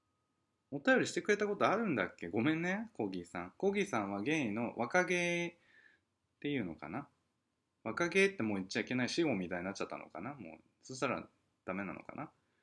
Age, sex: 20-39, male